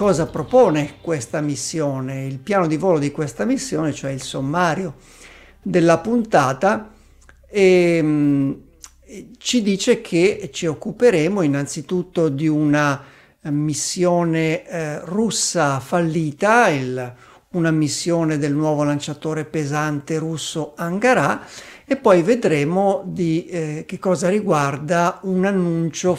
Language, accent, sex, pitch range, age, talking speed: Italian, native, male, 150-185 Hz, 50-69, 110 wpm